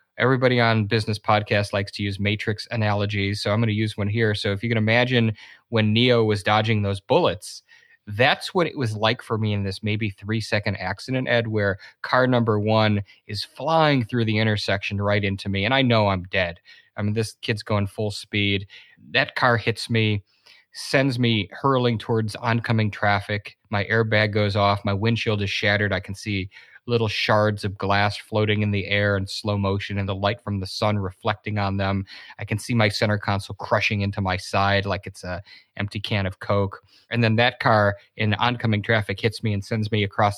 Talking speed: 200 wpm